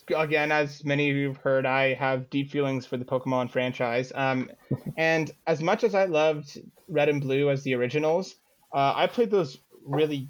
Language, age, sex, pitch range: English, 20-39, male, 130-155 Hz